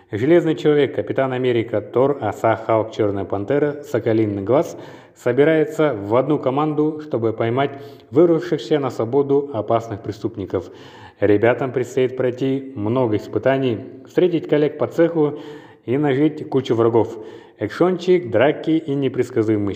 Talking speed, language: 120 wpm, Russian